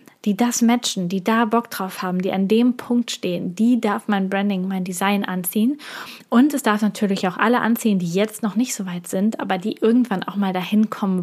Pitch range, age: 195-225 Hz, 20-39